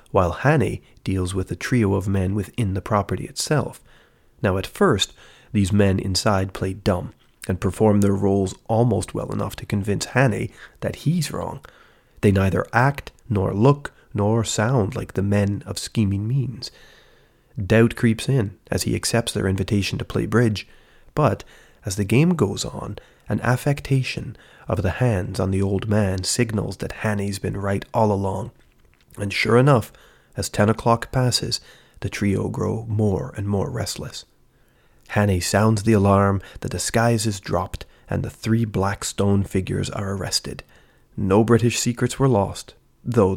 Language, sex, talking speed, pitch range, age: English, male, 160 wpm, 95-120 Hz, 30-49